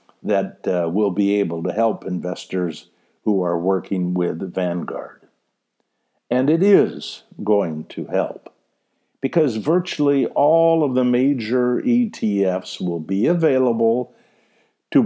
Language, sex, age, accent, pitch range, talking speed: English, male, 60-79, American, 100-165 Hz, 120 wpm